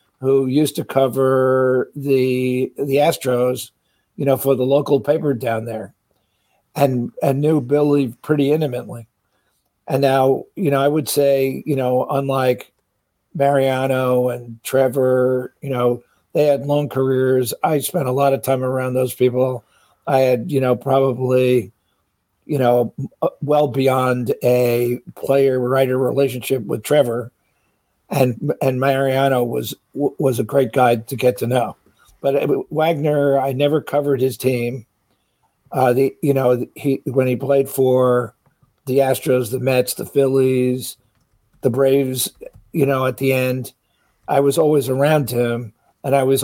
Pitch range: 125-140 Hz